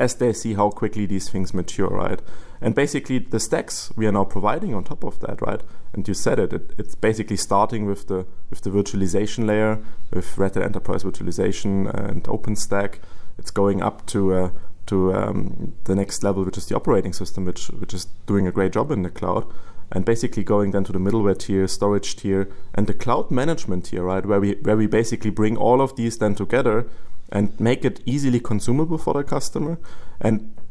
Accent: German